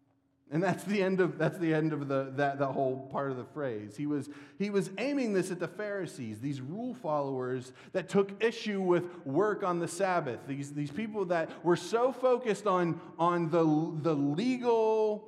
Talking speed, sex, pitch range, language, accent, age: 195 wpm, male, 140-195 Hz, English, American, 30-49